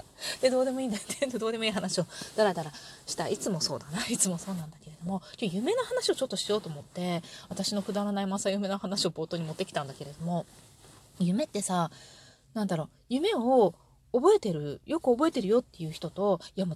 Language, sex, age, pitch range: Japanese, female, 30-49, 170-260 Hz